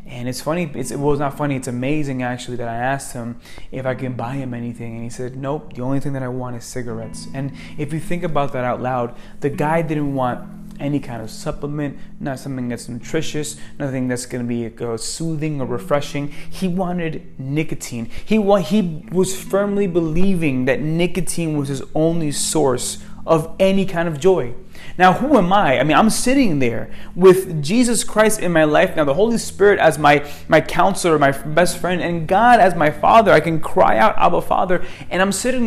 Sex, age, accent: male, 30-49, American